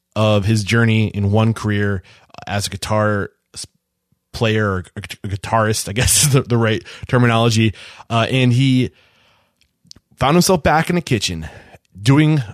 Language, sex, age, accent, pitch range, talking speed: English, male, 20-39, American, 105-140 Hz, 130 wpm